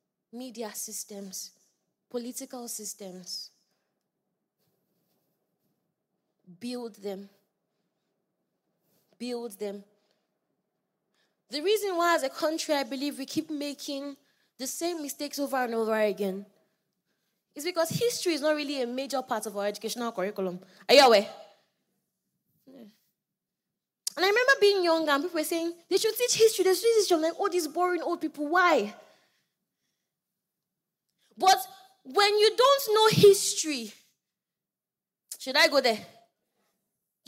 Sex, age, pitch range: female, 20-39, 200-330 Hz